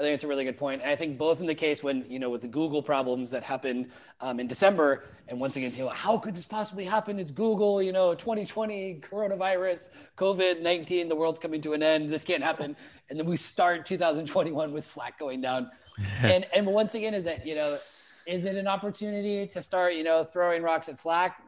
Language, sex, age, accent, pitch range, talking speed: English, male, 30-49, American, 135-175 Hz, 220 wpm